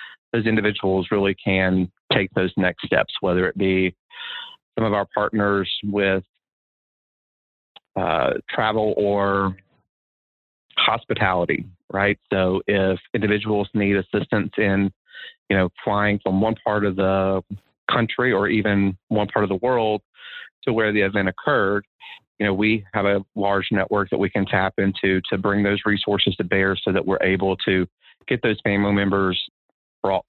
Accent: American